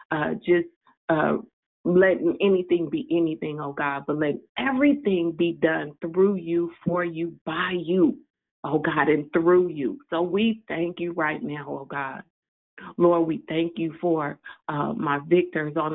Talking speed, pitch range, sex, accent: 160 wpm, 155-190 Hz, female, American